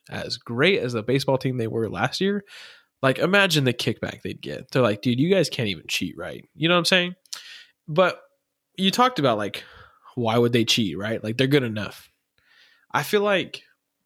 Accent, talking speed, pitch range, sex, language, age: American, 200 wpm, 110-150 Hz, male, English, 20-39